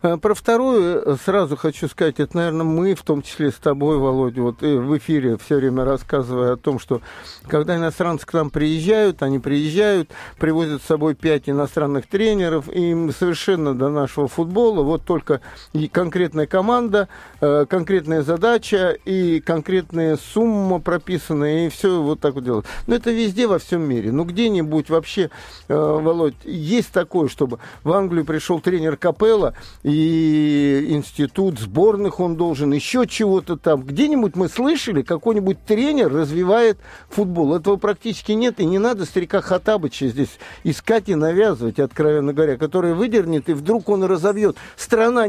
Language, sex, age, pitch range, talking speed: Russian, male, 50-69, 150-205 Hz, 150 wpm